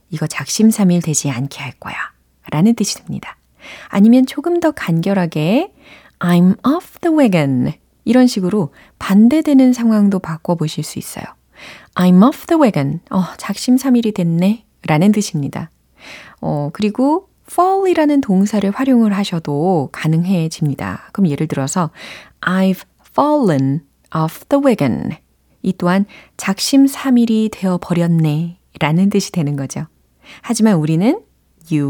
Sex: female